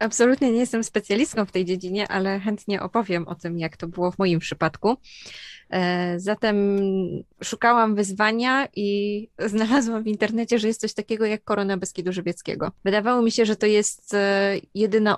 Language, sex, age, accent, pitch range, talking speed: Polish, female, 20-39, native, 190-220 Hz, 160 wpm